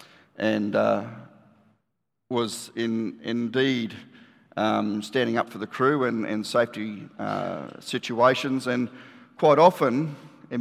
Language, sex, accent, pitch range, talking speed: English, male, Australian, 110-130 Hz, 115 wpm